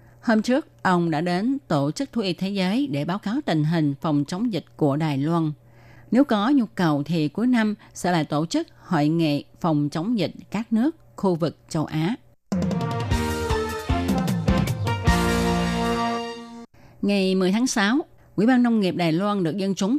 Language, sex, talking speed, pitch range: Vietnamese, female, 170 wpm, 150-205 Hz